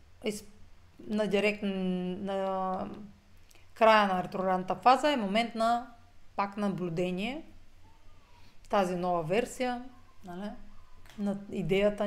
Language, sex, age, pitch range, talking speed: Bulgarian, female, 30-49, 165-215 Hz, 85 wpm